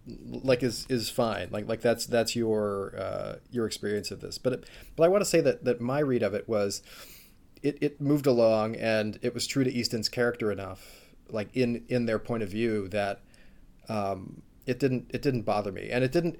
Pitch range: 105-125 Hz